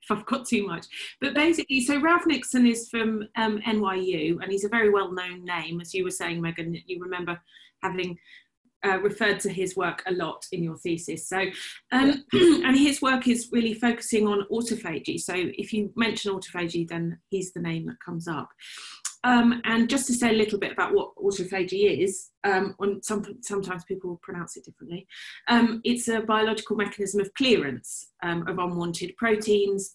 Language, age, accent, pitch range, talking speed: English, 30-49, British, 180-230 Hz, 185 wpm